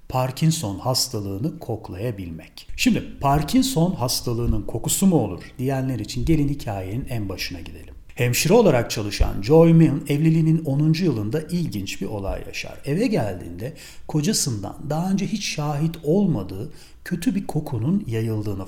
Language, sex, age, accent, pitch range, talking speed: Turkish, male, 40-59, native, 110-165 Hz, 130 wpm